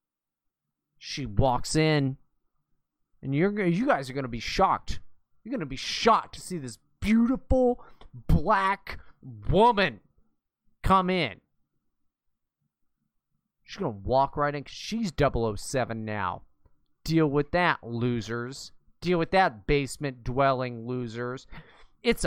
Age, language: 30-49, English